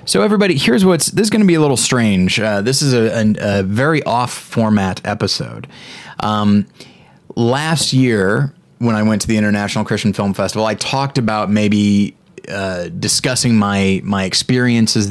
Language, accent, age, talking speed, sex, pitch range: English, American, 20-39, 165 wpm, male, 100-125 Hz